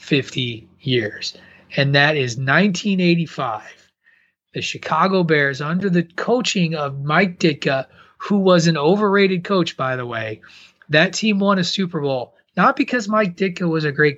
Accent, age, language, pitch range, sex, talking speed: American, 30-49, English, 140-185 Hz, male, 150 wpm